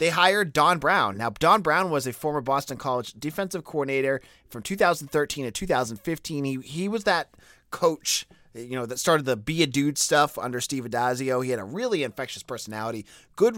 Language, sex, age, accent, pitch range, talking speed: English, male, 30-49, American, 120-155 Hz, 185 wpm